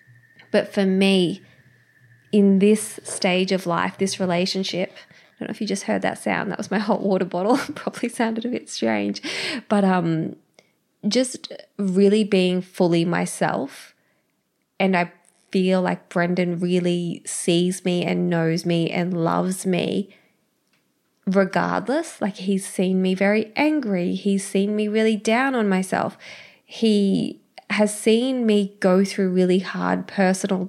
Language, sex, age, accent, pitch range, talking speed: English, female, 20-39, Australian, 175-205 Hz, 145 wpm